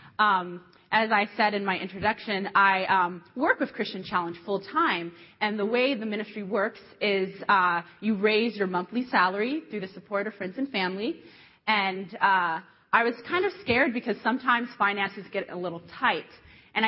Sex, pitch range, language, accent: female, 180-225 Hz, English, American